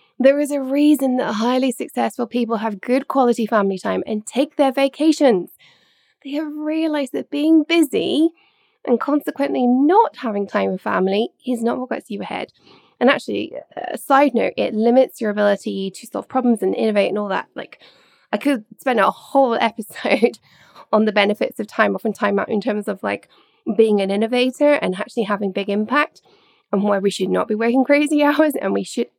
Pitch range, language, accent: 220-295 Hz, English, British